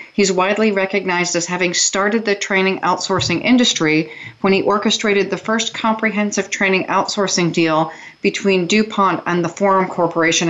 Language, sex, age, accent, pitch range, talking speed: English, female, 40-59, American, 175-205 Hz, 145 wpm